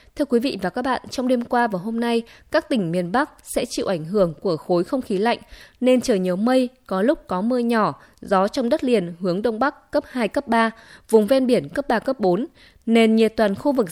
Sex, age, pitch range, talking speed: female, 20-39, 195-260 Hz, 245 wpm